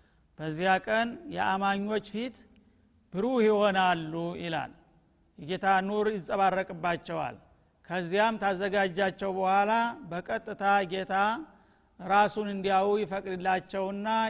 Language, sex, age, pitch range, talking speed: Amharic, male, 50-69, 180-210 Hz, 75 wpm